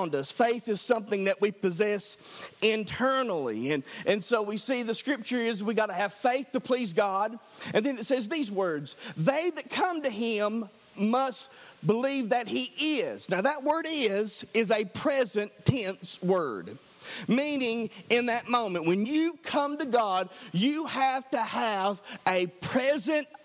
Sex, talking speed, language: male, 165 wpm, English